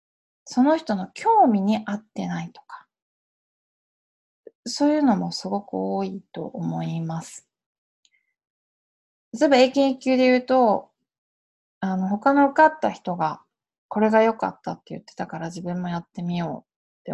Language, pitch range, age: Japanese, 165-240 Hz, 20-39